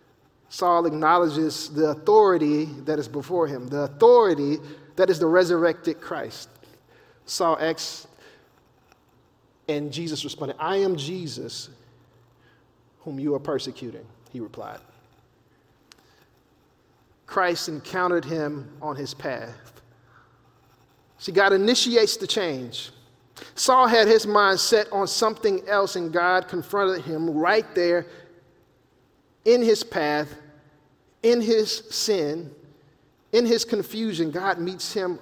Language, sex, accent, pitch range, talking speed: English, male, American, 145-190 Hz, 110 wpm